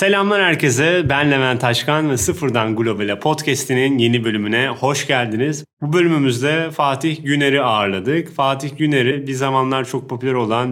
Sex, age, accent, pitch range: male, 30-49, native, 115-140 Hz